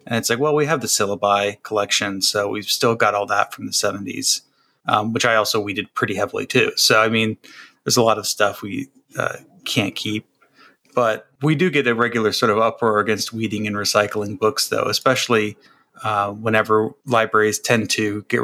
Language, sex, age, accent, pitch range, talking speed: English, male, 30-49, American, 105-120 Hz, 190 wpm